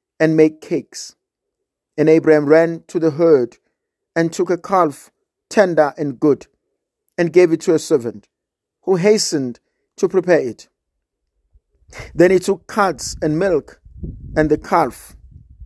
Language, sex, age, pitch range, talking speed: English, male, 50-69, 150-190 Hz, 140 wpm